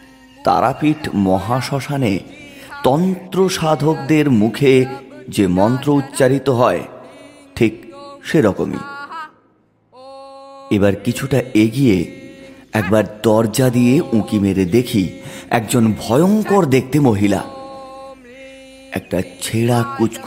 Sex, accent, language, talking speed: male, native, Bengali, 50 wpm